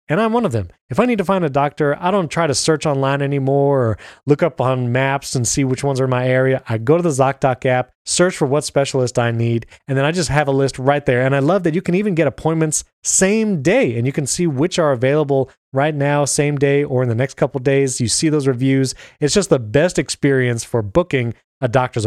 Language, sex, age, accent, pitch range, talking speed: English, male, 30-49, American, 125-160 Hz, 255 wpm